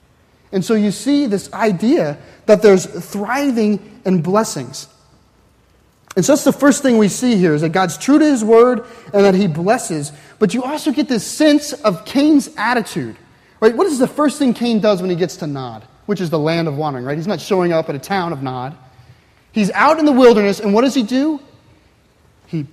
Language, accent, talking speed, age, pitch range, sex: English, American, 210 wpm, 30-49, 175-260 Hz, male